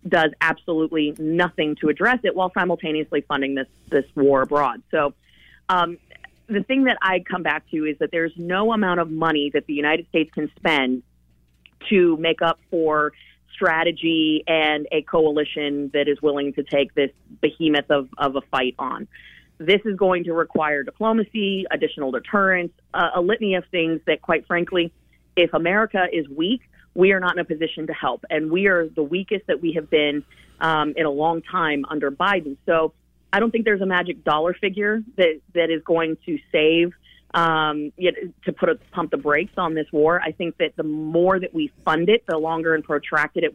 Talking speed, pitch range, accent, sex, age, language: 195 wpm, 150-180 Hz, American, female, 30-49, English